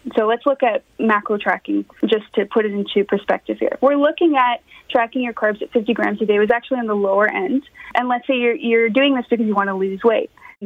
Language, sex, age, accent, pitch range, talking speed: English, female, 20-39, American, 215-270 Hz, 240 wpm